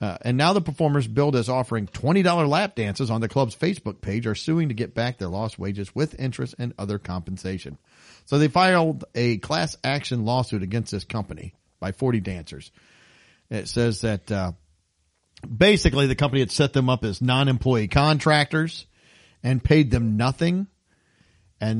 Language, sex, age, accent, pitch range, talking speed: English, male, 40-59, American, 95-130 Hz, 170 wpm